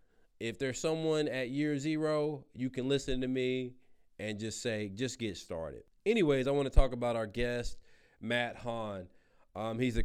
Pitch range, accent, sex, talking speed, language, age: 110-140 Hz, American, male, 175 wpm, English, 30-49